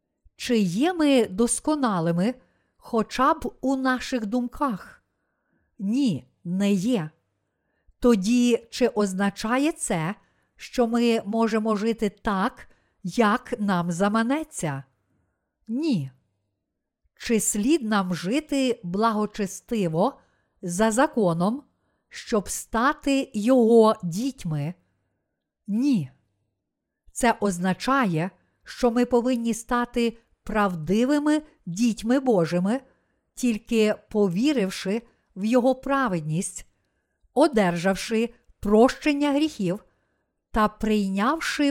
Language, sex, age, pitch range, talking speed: Ukrainian, female, 50-69, 185-250 Hz, 80 wpm